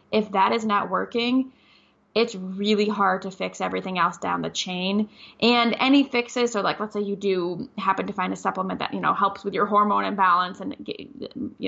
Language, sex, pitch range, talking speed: English, female, 190-215 Hz, 200 wpm